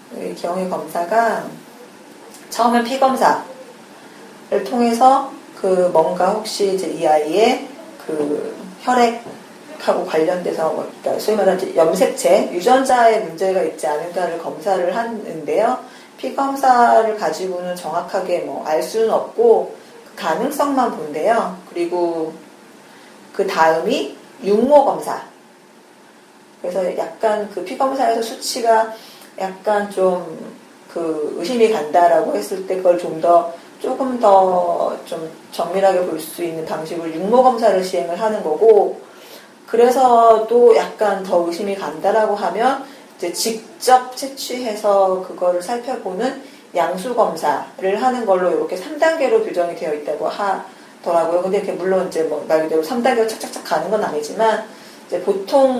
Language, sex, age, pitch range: Korean, female, 40-59, 175-245 Hz